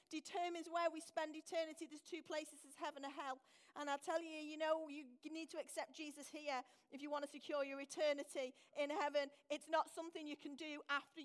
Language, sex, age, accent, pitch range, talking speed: English, female, 40-59, British, 275-315 Hz, 215 wpm